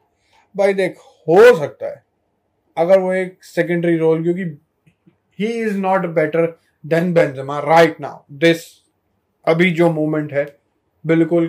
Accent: native